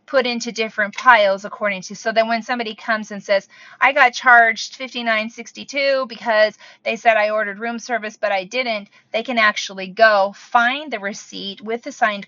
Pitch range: 190-250 Hz